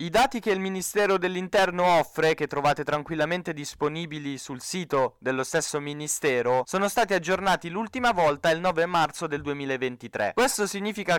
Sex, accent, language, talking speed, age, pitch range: male, native, Italian, 150 wpm, 20-39, 150-195 Hz